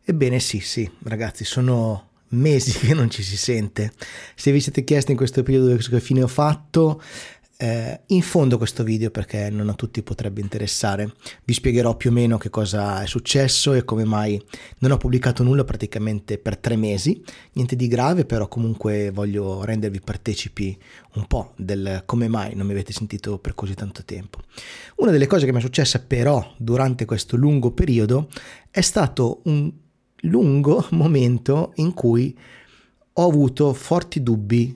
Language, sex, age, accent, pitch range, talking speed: Italian, male, 30-49, native, 105-130 Hz, 165 wpm